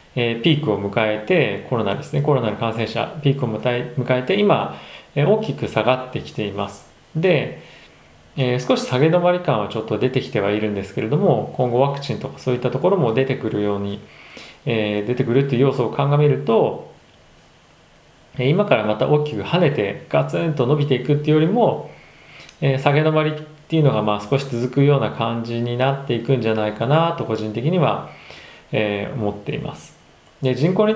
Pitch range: 110-150 Hz